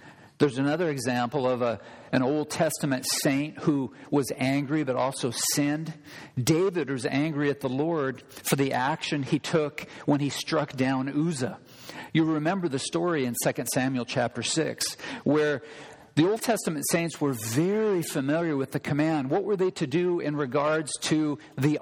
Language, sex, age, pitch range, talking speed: English, male, 50-69, 145-210 Hz, 160 wpm